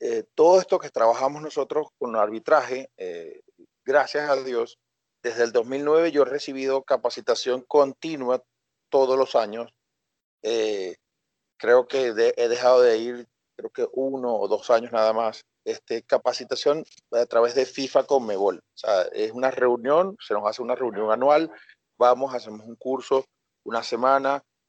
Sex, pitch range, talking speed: male, 120-195 Hz, 155 wpm